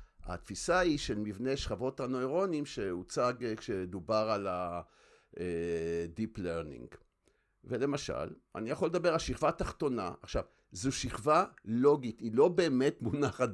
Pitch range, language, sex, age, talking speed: 110-140 Hz, Hebrew, male, 50-69, 115 wpm